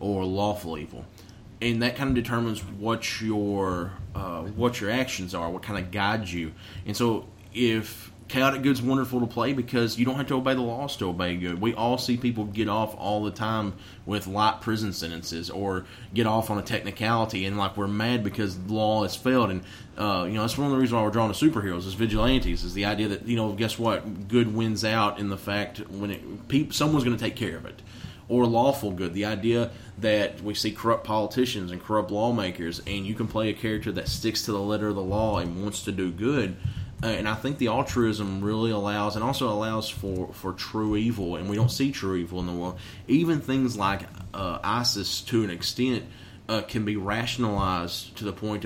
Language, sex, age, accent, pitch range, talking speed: English, male, 30-49, American, 100-115 Hz, 215 wpm